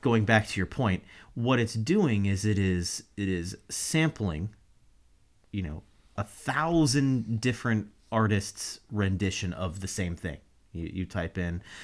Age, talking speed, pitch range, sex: 30-49, 145 wpm, 100-125 Hz, male